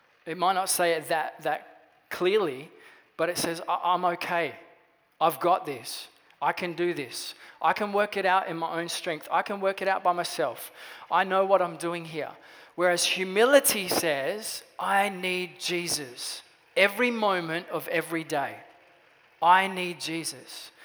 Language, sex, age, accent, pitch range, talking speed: English, male, 20-39, Australian, 165-195 Hz, 160 wpm